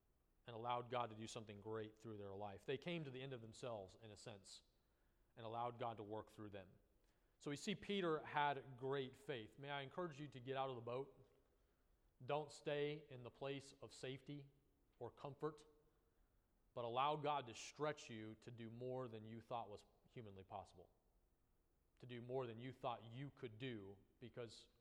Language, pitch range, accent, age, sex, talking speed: English, 115-150 Hz, American, 40-59, male, 190 wpm